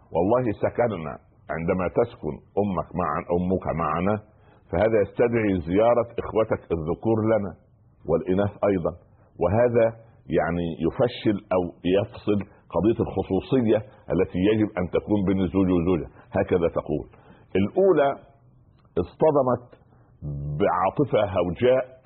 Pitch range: 90-120 Hz